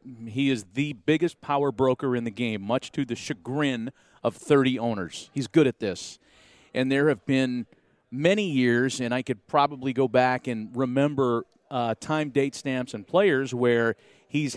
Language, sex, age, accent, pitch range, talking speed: English, male, 40-59, American, 125-145 Hz, 175 wpm